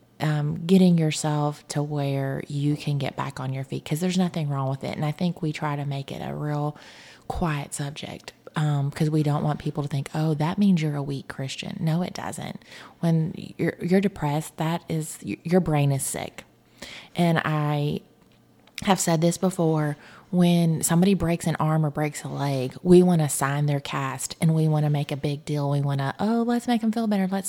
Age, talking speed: 30-49, 210 wpm